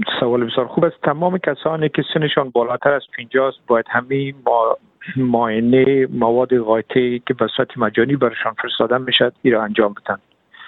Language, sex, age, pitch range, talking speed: Persian, male, 50-69, 115-130 Hz, 155 wpm